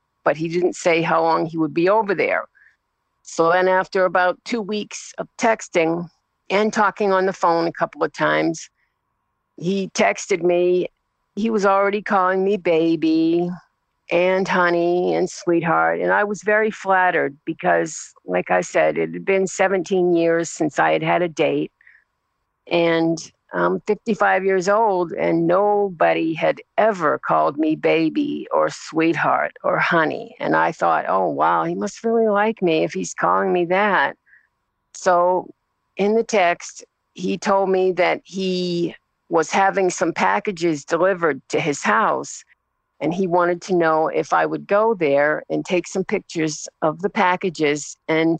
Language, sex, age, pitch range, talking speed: English, female, 50-69, 165-200 Hz, 155 wpm